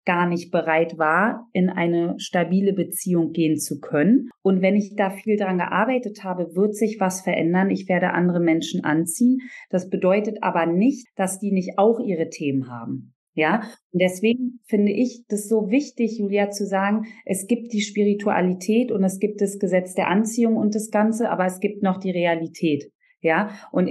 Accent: German